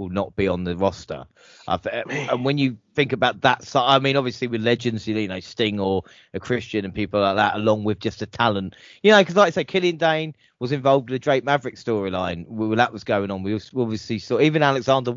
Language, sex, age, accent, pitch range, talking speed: English, male, 30-49, British, 110-135 Hz, 235 wpm